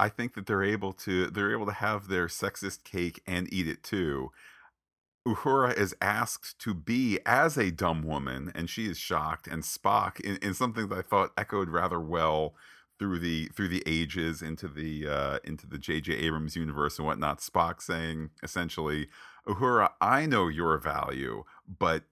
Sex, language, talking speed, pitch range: male, English, 175 wpm, 80-95 Hz